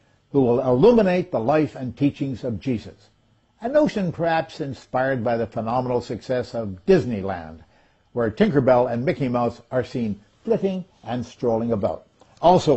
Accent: American